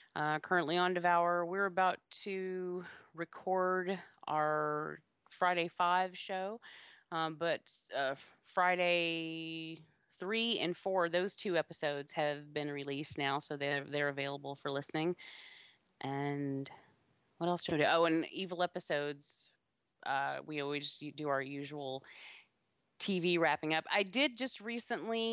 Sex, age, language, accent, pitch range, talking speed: female, 30-49, English, American, 150-185 Hz, 130 wpm